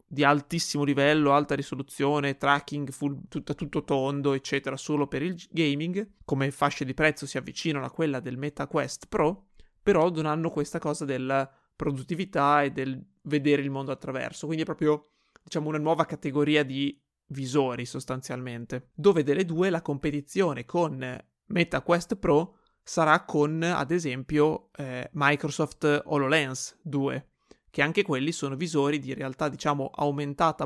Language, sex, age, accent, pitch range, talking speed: Italian, male, 30-49, native, 140-160 Hz, 145 wpm